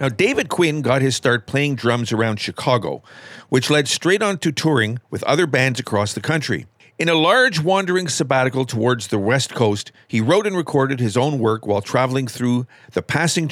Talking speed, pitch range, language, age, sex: 190 wpm, 125-165 Hz, English, 50-69, male